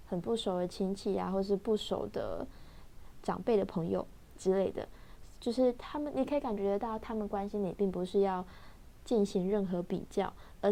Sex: female